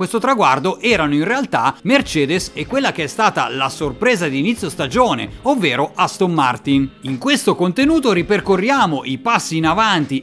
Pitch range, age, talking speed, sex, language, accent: 150-220 Hz, 40-59, 160 wpm, male, Italian, native